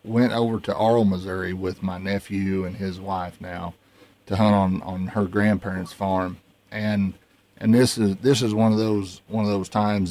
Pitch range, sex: 95-105 Hz, male